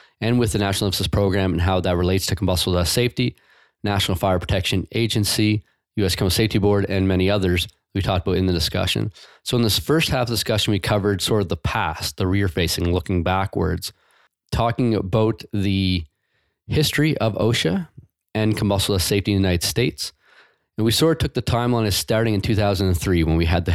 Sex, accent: male, American